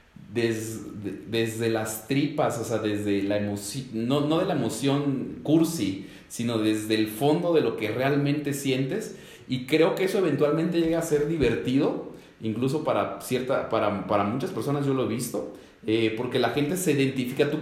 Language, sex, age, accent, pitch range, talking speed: English, male, 40-59, Mexican, 105-140 Hz, 155 wpm